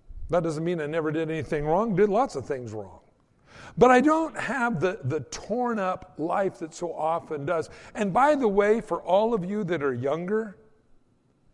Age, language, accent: 60-79, English, American